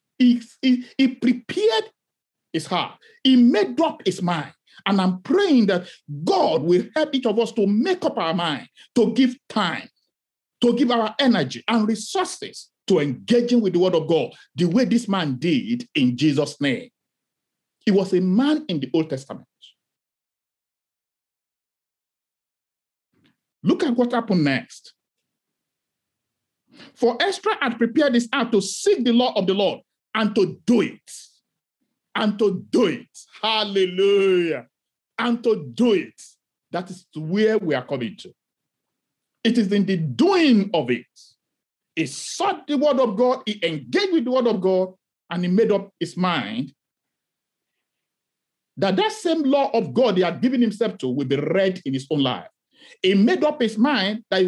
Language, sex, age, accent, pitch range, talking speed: English, male, 50-69, Nigerian, 185-260 Hz, 160 wpm